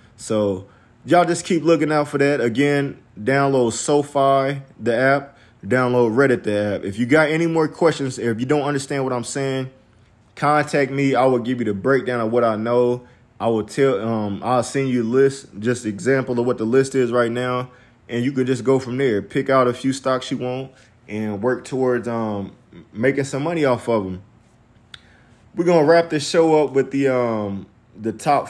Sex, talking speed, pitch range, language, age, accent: male, 200 wpm, 115-140 Hz, English, 20-39, American